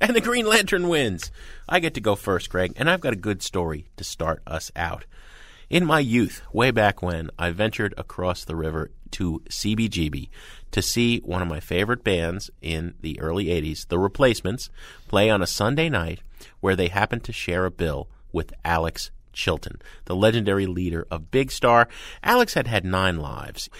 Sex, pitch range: male, 90-125 Hz